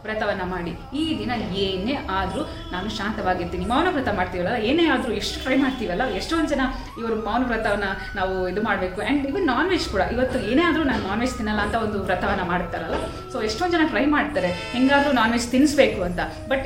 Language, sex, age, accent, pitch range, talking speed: Kannada, female, 20-39, native, 200-265 Hz, 175 wpm